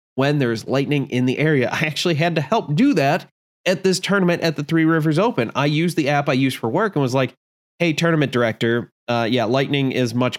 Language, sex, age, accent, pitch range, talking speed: English, male, 20-39, American, 120-155 Hz, 230 wpm